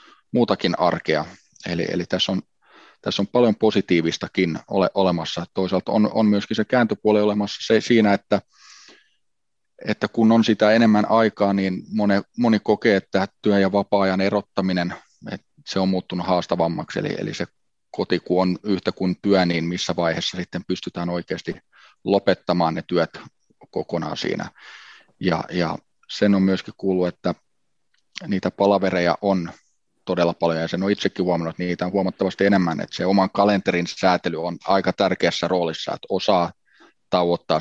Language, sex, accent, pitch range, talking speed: Finnish, male, native, 85-100 Hz, 150 wpm